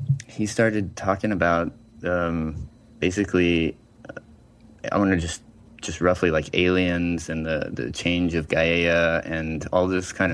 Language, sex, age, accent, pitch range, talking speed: English, male, 20-39, American, 80-95 Hz, 145 wpm